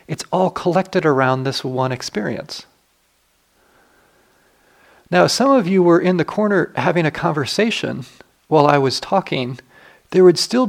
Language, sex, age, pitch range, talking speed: English, male, 40-59, 130-175 Hz, 145 wpm